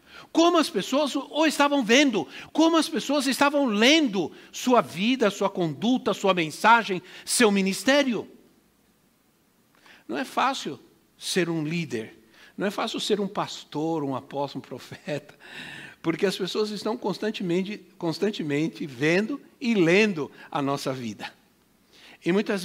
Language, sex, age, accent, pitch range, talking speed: Portuguese, male, 60-79, Brazilian, 170-250 Hz, 130 wpm